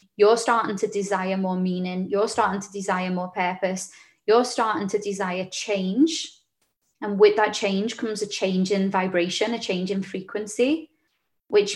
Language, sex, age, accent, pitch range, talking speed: English, female, 20-39, British, 185-225 Hz, 160 wpm